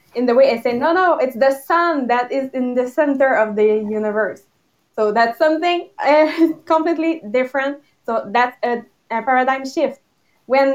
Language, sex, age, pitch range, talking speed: English, female, 20-39, 240-300 Hz, 175 wpm